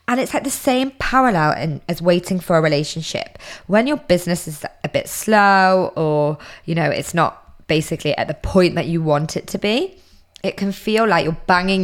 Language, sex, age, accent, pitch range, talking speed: English, female, 20-39, British, 155-190 Hz, 200 wpm